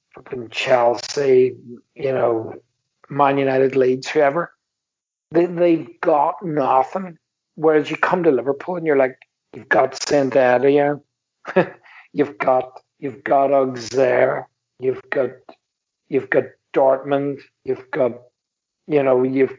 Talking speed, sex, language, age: 120 wpm, male, English, 50-69